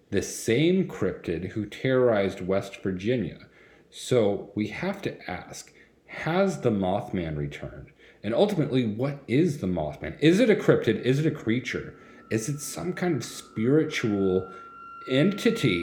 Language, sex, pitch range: English, male, 95-130 Hz